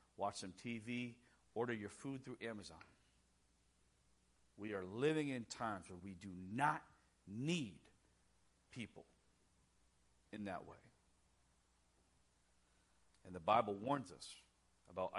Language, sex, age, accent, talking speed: English, male, 50-69, American, 110 wpm